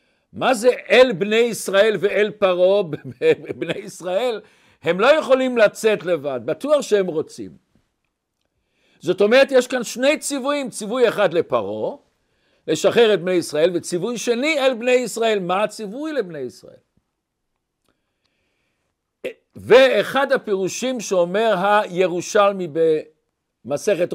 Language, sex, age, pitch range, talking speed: Hebrew, male, 60-79, 180-235 Hz, 110 wpm